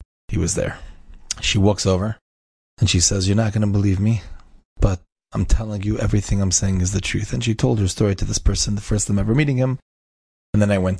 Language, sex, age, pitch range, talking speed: English, male, 20-39, 90-110 Hz, 235 wpm